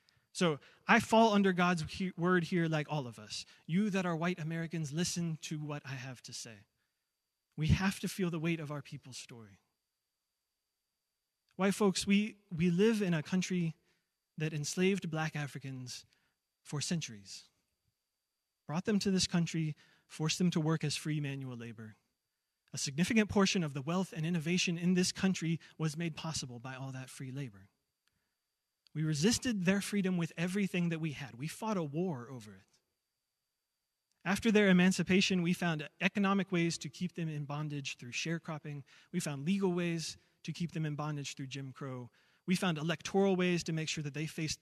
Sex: male